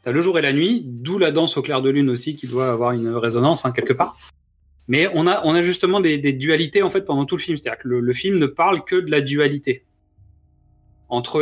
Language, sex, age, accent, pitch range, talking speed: French, male, 30-49, French, 125-160 Hz, 255 wpm